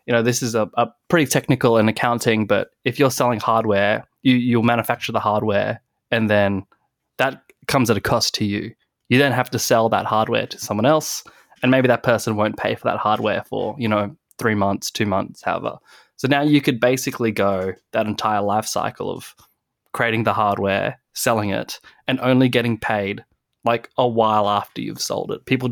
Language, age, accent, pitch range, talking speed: English, 20-39, Australian, 105-130 Hz, 195 wpm